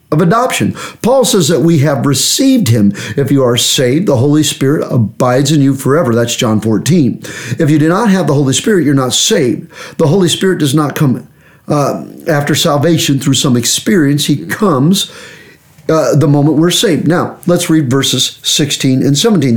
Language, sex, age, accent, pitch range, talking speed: English, male, 50-69, American, 135-175 Hz, 185 wpm